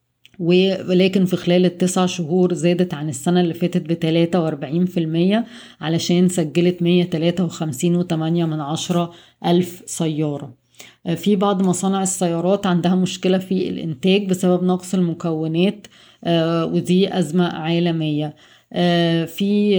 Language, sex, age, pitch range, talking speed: Arabic, female, 20-39, 165-185 Hz, 120 wpm